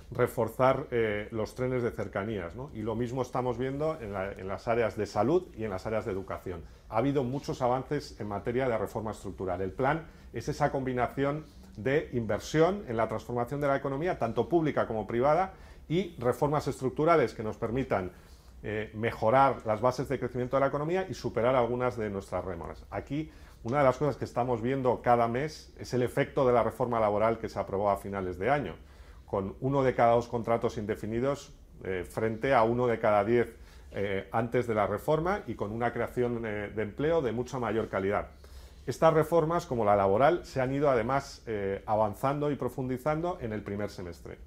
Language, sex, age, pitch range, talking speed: Spanish, male, 40-59, 105-135 Hz, 195 wpm